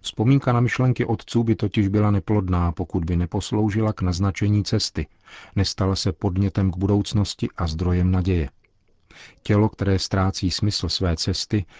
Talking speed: 140 wpm